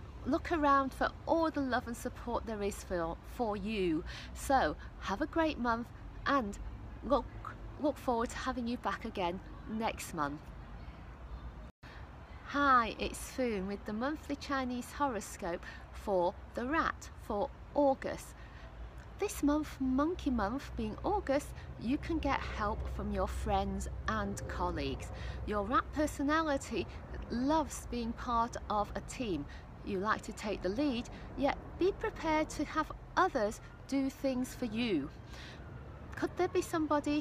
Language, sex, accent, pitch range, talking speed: English, female, British, 205-295 Hz, 140 wpm